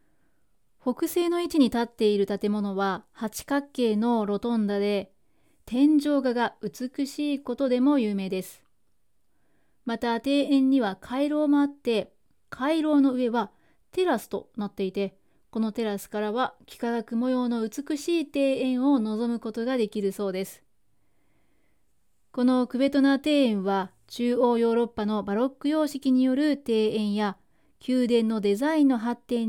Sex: female